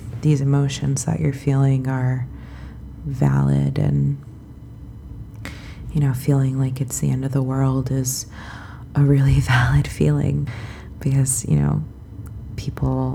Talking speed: 125 wpm